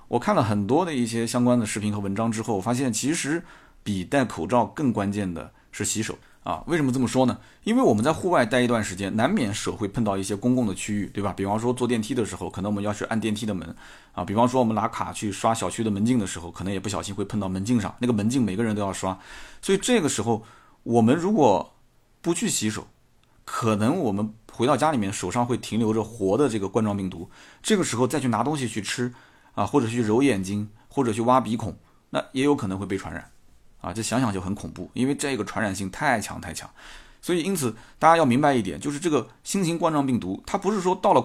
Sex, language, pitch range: male, Chinese, 100-125 Hz